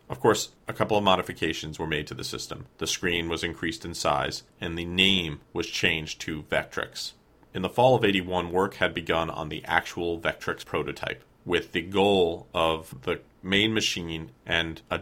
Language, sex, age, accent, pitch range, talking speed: English, male, 40-59, American, 80-95 Hz, 185 wpm